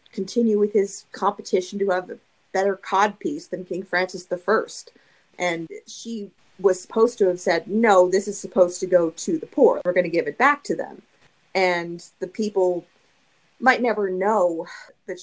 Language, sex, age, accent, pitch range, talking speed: English, female, 30-49, American, 175-210 Hz, 175 wpm